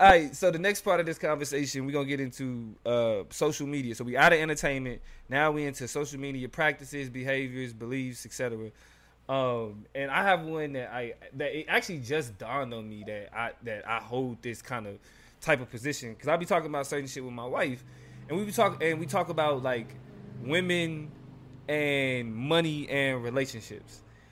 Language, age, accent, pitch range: English, 20-39, American, 130-165 Hz